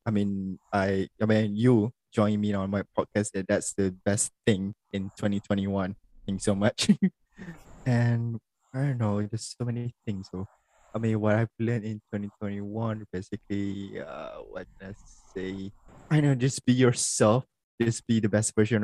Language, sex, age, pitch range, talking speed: Malay, male, 20-39, 100-115 Hz, 165 wpm